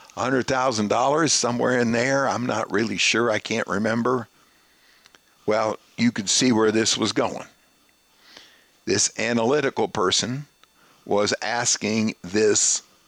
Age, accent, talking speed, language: 50-69, American, 110 wpm, English